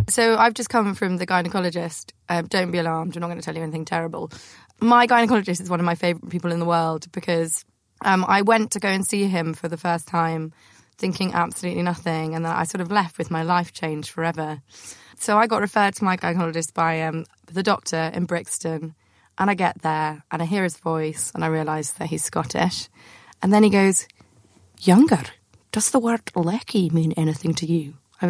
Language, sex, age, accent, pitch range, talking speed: English, female, 20-39, British, 165-210 Hz, 210 wpm